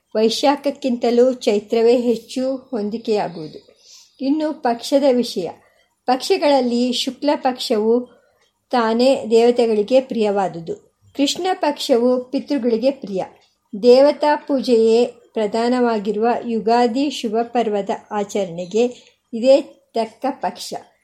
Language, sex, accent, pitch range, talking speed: Kannada, male, native, 230-275 Hz, 70 wpm